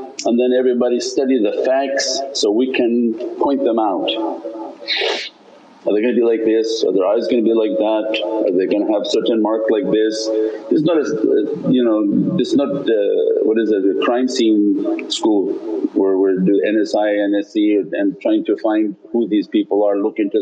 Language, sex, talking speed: English, male, 185 wpm